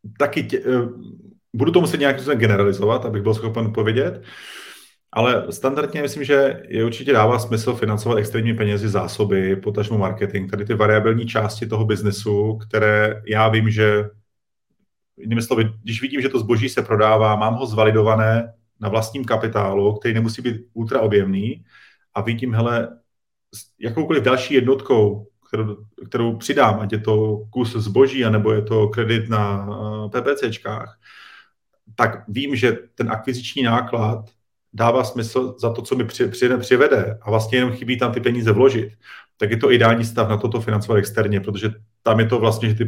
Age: 30-49